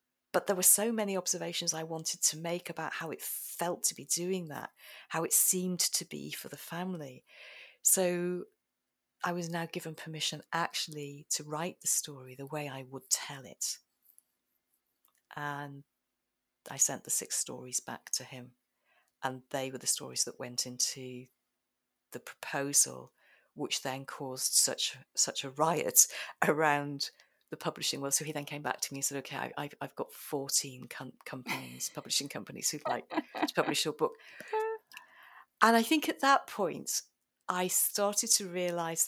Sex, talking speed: female, 160 wpm